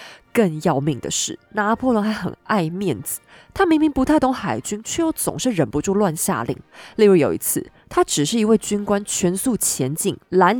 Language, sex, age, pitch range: Chinese, female, 20-39, 170-250 Hz